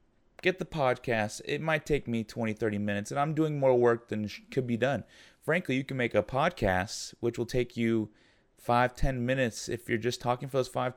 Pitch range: 110-135 Hz